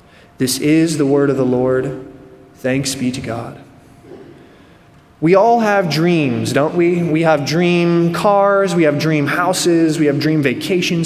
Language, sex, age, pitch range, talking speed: English, male, 20-39, 145-180 Hz, 155 wpm